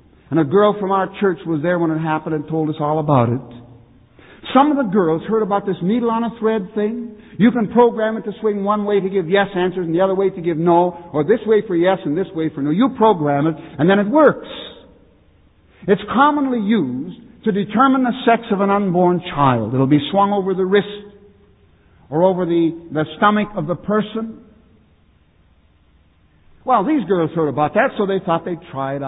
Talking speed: 205 wpm